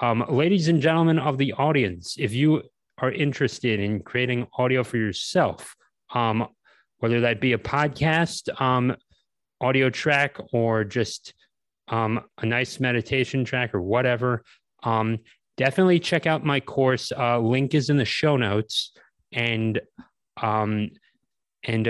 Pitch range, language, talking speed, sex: 115-140 Hz, English, 135 wpm, male